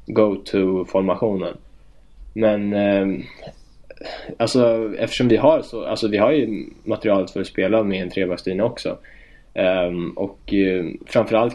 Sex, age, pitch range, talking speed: male, 20-39, 95-110 Hz, 135 wpm